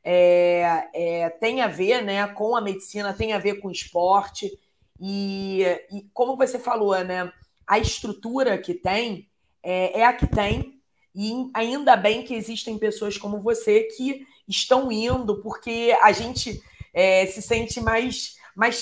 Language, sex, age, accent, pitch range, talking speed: Portuguese, female, 20-39, Brazilian, 190-230 Hz, 155 wpm